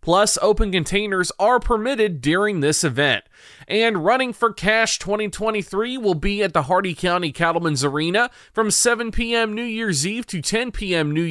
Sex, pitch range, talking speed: male, 160-210 Hz, 165 wpm